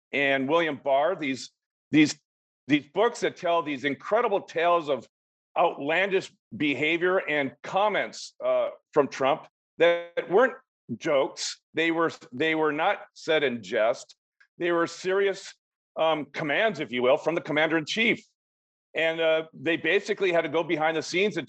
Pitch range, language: 155-195 Hz, English